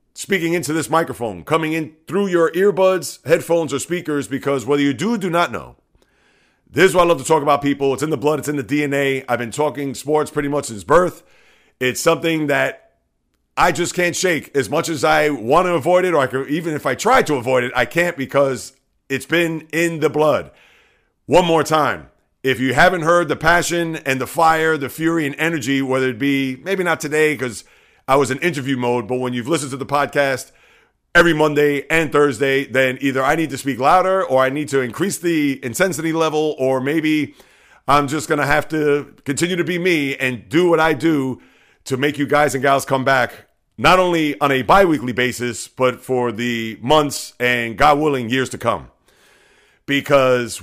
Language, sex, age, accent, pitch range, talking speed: English, male, 40-59, American, 130-165 Hz, 205 wpm